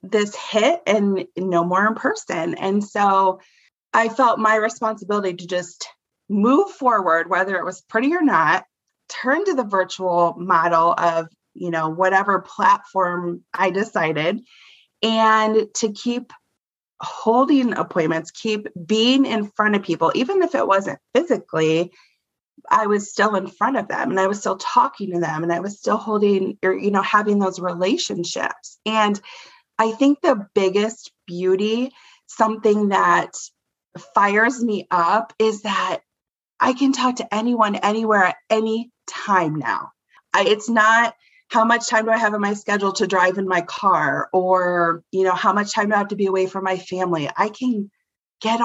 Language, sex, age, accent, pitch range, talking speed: English, female, 30-49, American, 185-225 Hz, 165 wpm